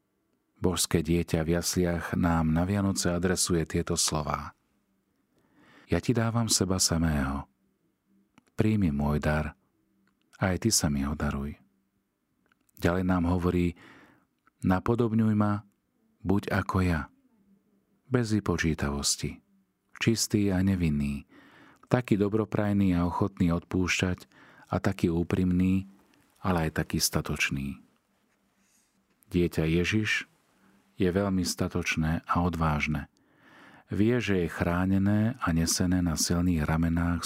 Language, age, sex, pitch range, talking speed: Slovak, 40-59, male, 80-105 Hz, 105 wpm